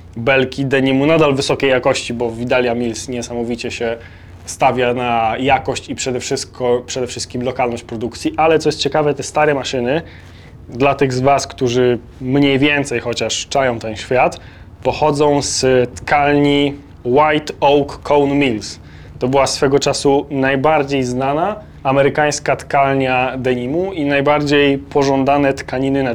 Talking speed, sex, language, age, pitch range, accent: 135 wpm, male, Polish, 20-39, 120-140 Hz, native